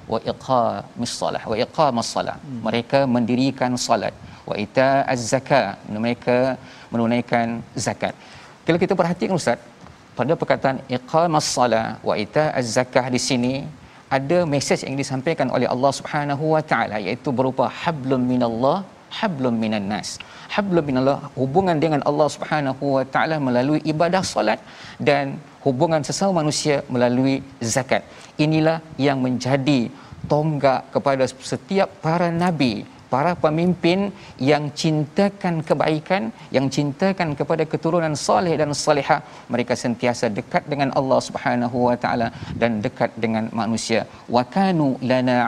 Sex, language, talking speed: male, Malayalam, 120 wpm